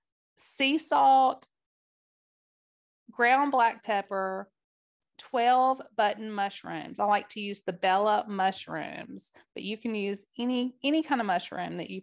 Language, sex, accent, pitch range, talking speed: English, female, American, 195-255 Hz, 130 wpm